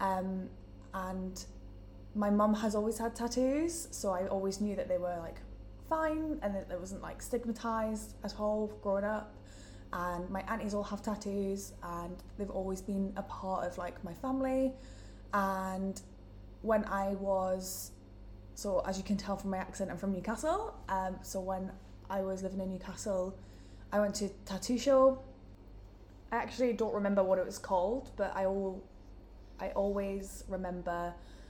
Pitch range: 180-215 Hz